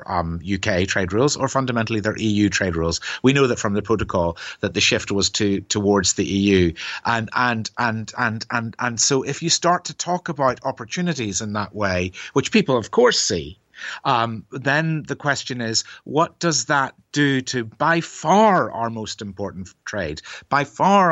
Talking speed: 185 wpm